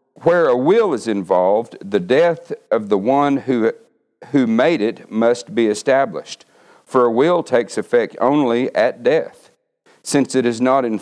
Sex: male